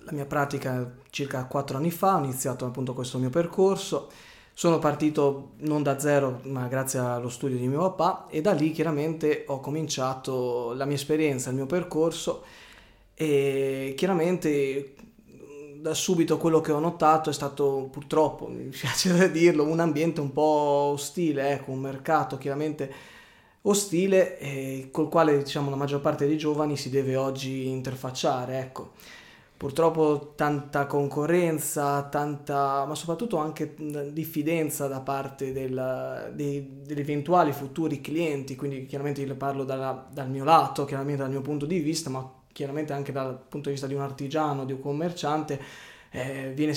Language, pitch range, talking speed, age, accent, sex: Italian, 135-155 Hz, 155 wpm, 20-39, native, male